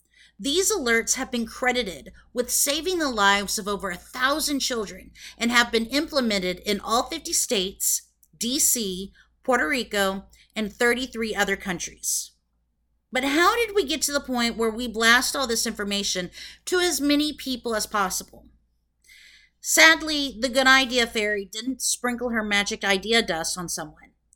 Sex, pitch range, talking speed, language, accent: female, 185-255 Hz, 155 wpm, English, American